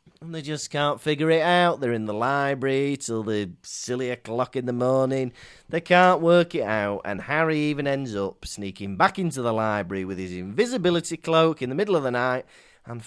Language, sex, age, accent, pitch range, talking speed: English, male, 30-49, British, 120-170 Hz, 200 wpm